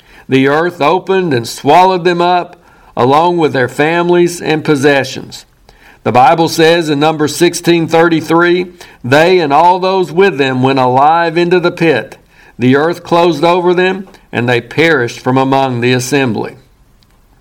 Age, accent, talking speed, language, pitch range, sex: 60-79, American, 145 wpm, English, 140-175 Hz, male